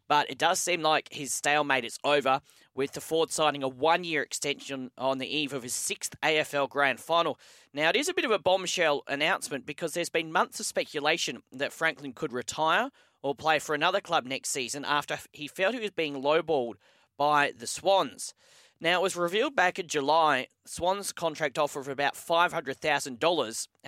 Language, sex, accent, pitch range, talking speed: English, male, Australian, 135-165 Hz, 185 wpm